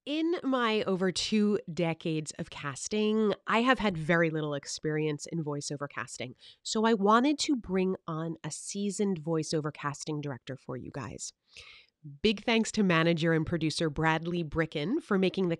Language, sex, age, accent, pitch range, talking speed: English, female, 30-49, American, 165-215 Hz, 160 wpm